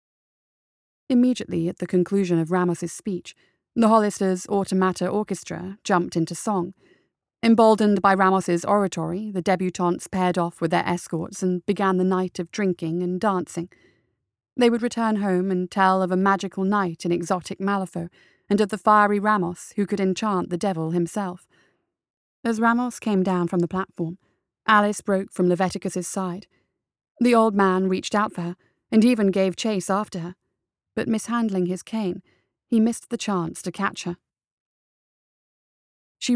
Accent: British